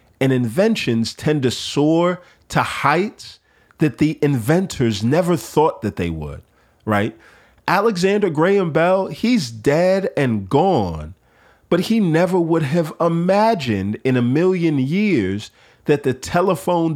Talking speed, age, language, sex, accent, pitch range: 125 wpm, 40-59, English, male, American, 100-140 Hz